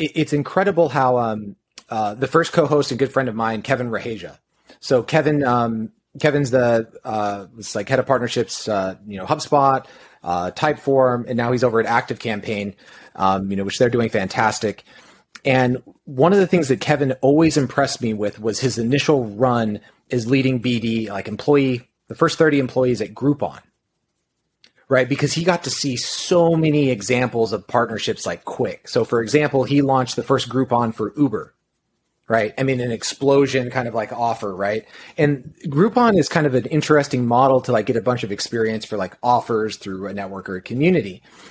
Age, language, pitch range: 30-49, English, 115-145 Hz